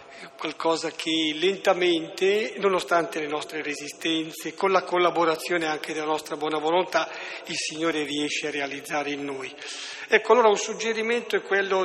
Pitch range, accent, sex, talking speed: 155-190 Hz, native, male, 140 wpm